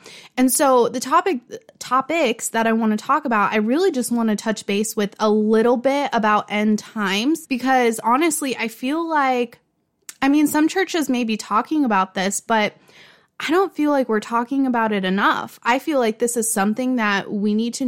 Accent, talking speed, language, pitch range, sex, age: American, 200 wpm, English, 220-265 Hz, female, 20-39